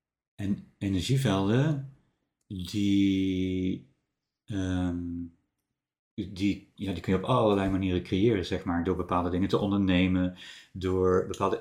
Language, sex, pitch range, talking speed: Dutch, male, 90-105 Hz, 115 wpm